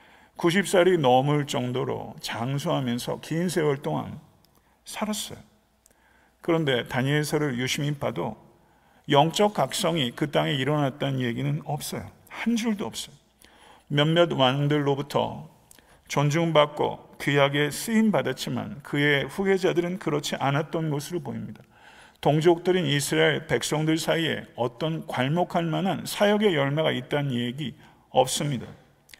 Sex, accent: male, native